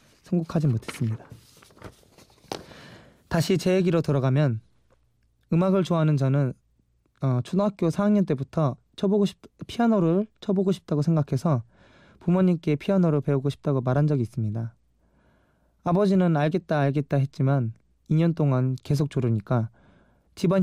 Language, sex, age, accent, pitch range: Korean, male, 20-39, native, 130-175 Hz